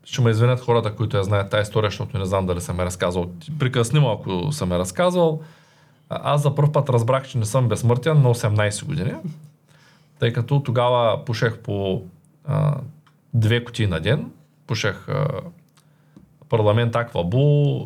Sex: male